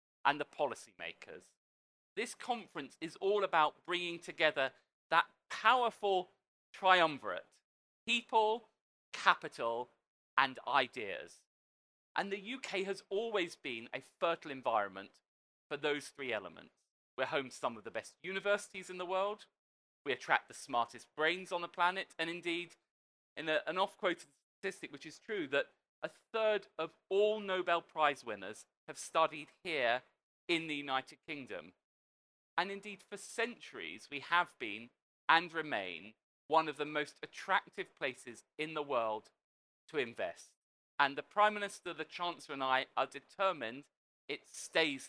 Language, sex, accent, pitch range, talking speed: English, male, British, 145-195 Hz, 140 wpm